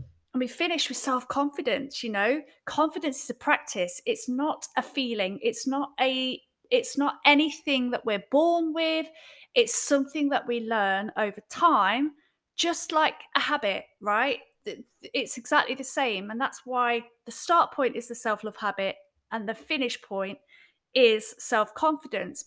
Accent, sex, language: British, female, English